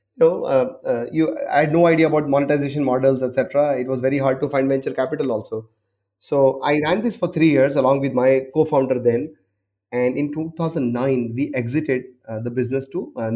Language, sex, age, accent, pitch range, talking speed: English, male, 30-49, Indian, 120-145 Hz, 200 wpm